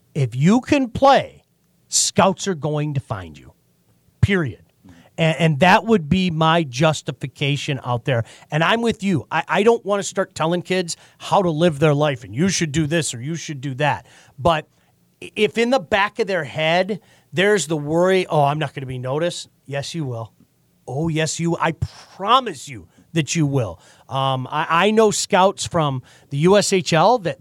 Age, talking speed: 40-59, 190 wpm